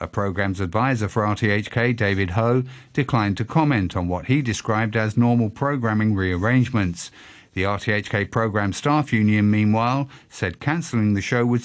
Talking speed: 150 wpm